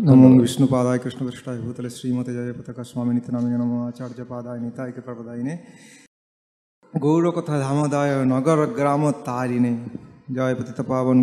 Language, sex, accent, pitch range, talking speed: English, male, Indian, 130-165 Hz, 95 wpm